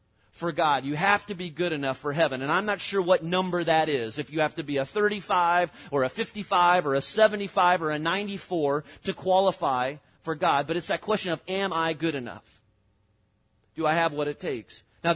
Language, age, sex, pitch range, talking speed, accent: English, 30-49, male, 115-160 Hz, 215 wpm, American